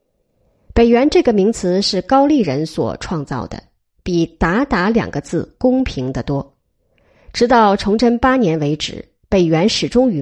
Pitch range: 165-235 Hz